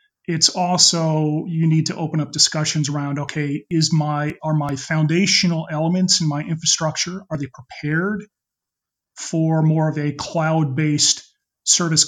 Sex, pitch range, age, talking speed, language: male, 145-175 Hz, 30-49, 140 wpm, English